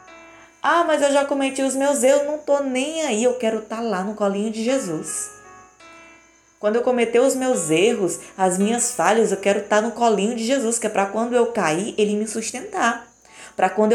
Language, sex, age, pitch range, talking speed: Portuguese, female, 20-39, 175-235 Hz, 215 wpm